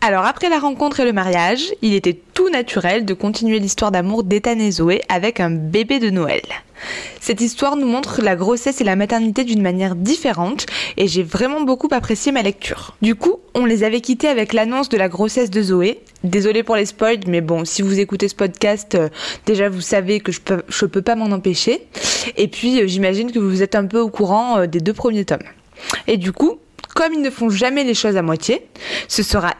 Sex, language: female, French